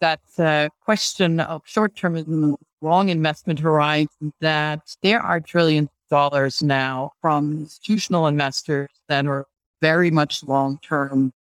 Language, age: English, 60-79